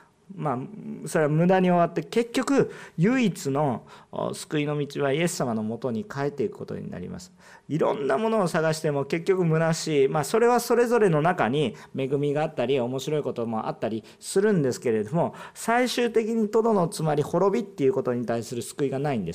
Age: 40-59